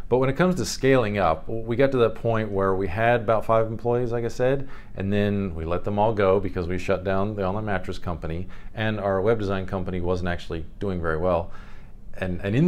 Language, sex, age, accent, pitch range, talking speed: English, male, 40-59, American, 95-115 Hz, 230 wpm